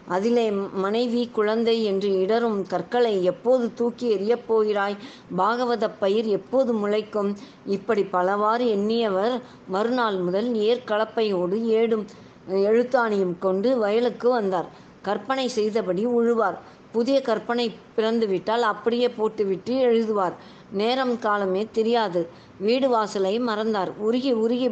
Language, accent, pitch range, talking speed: Tamil, native, 195-235 Hz, 100 wpm